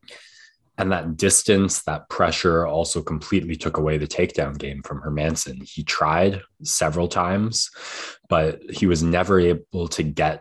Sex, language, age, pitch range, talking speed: male, English, 20-39, 75-85 Hz, 145 wpm